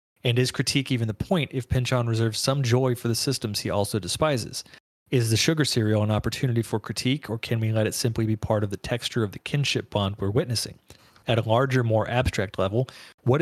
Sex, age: male, 40-59